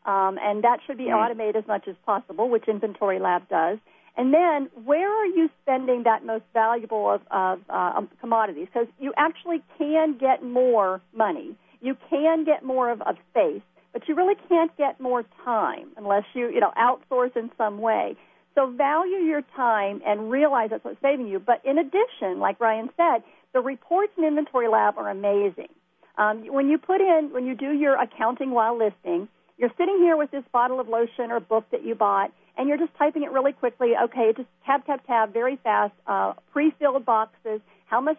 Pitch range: 220-295 Hz